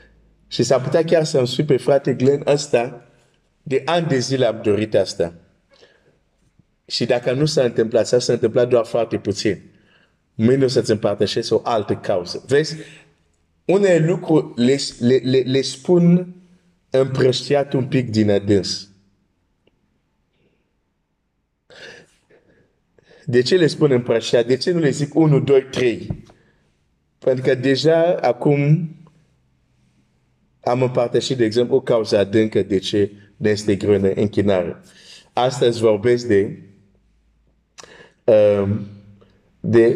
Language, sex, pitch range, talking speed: Romanian, male, 100-140 Hz, 110 wpm